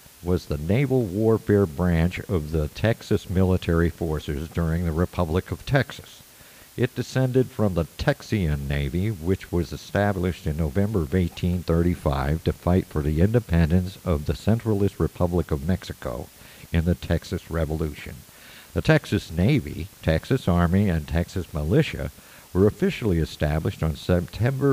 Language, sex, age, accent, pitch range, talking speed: English, male, 60-79, American, 85-105 Hz, 135 wpm